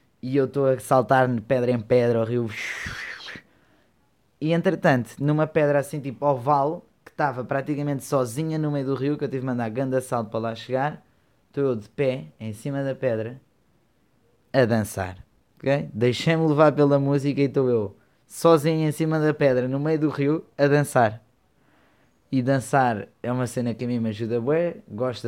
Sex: male